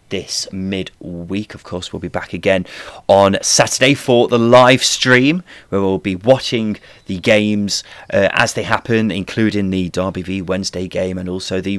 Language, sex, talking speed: English, male, 170 wpm